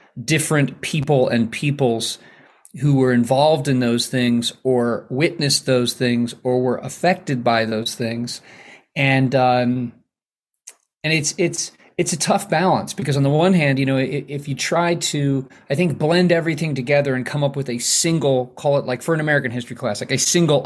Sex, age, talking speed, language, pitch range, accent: male, 30-49, 180 wpm, English, 130-160 Hz, American